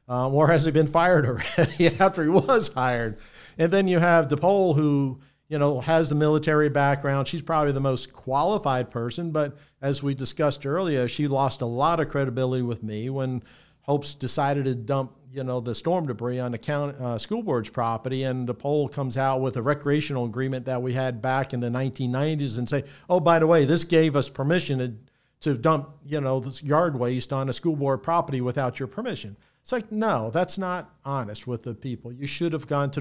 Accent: American